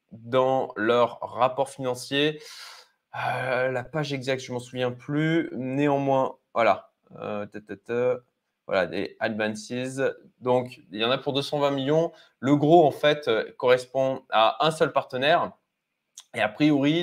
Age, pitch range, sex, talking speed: 20-39, 125-160 Hz, male, 135 wpm